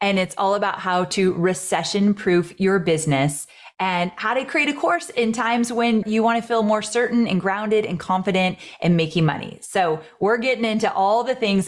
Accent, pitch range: American, 165-215 Hz